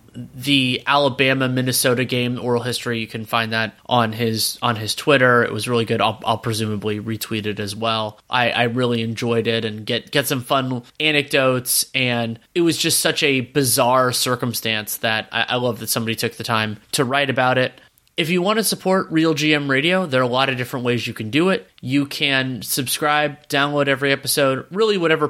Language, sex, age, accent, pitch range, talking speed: English, male, 20-39, American, 120-145 Hz, 200 wpm